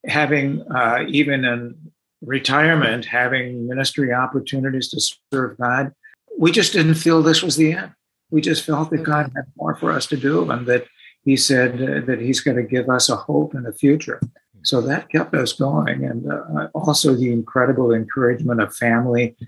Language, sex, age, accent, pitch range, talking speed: English, male, 60-79, American, 120-150 Hz, 180 wpm